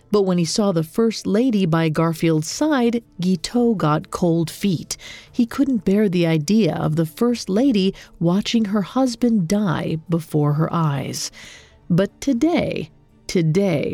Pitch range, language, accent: 165-230 Hz, English, American